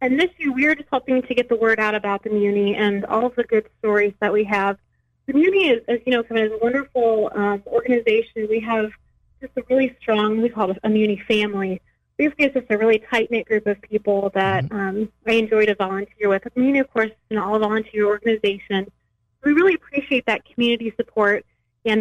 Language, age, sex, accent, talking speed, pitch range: English, 30-49, female, American, 215 wpm, 205-235 Hz